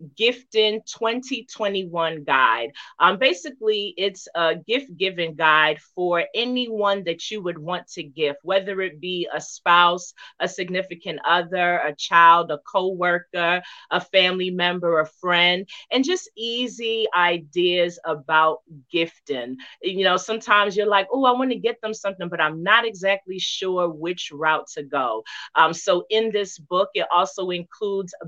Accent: American